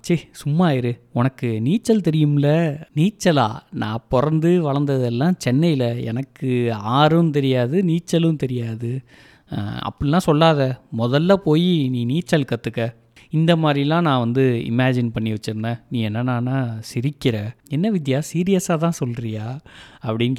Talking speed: 115 wpm